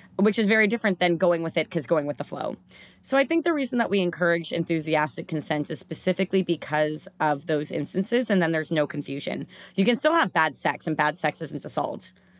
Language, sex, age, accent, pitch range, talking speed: English, female, 30-49, American, 155-190 Hz, 220 wpm